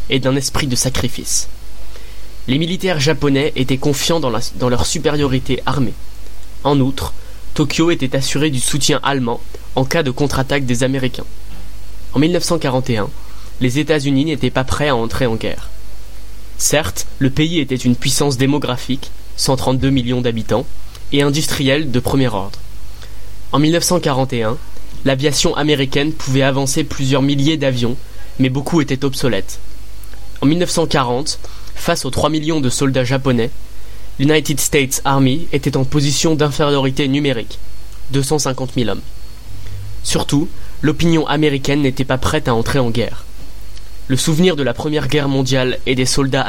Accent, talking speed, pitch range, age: French, 140 wpm, 115-145 Hz, 20-39